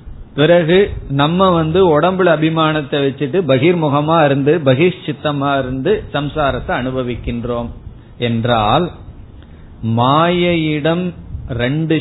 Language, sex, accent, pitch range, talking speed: Tamil, male, native, 125-165 Hz, 75 wpm